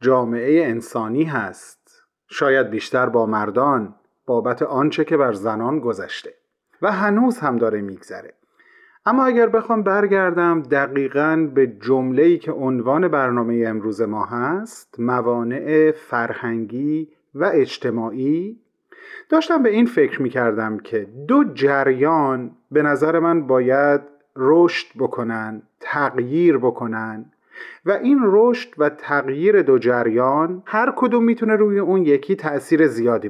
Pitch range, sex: 130-210 Hz, male